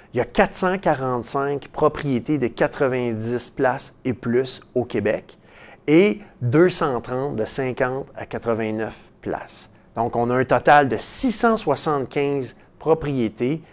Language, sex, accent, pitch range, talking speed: French, male, Canadian, 115-160 Hz, 120 wpm